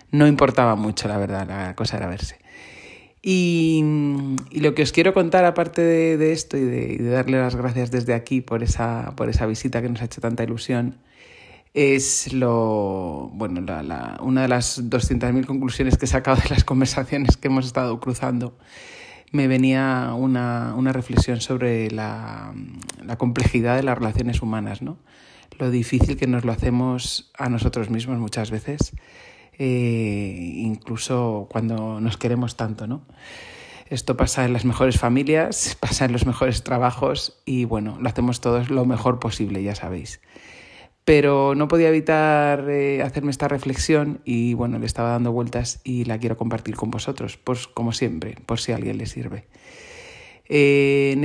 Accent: Spanish